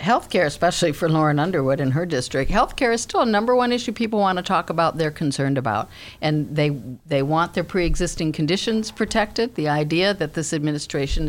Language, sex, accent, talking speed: English, female, American, 190 wpm